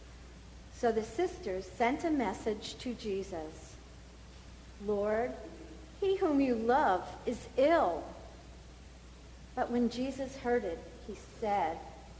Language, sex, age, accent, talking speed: English, female, 50-69, American, 110 wpm